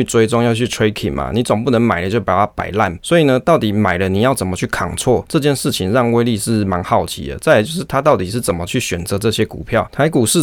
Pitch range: 100-120 Hz